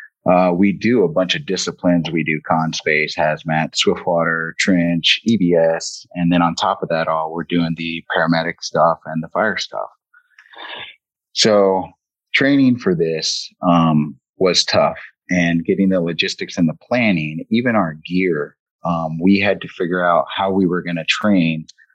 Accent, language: American, English